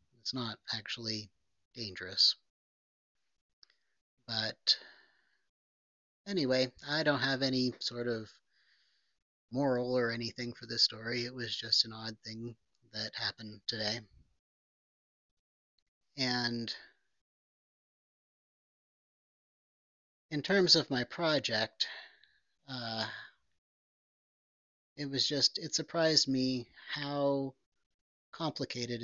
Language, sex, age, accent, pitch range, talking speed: English, male, 30-49, American, 105-135 Hz, 85 wpm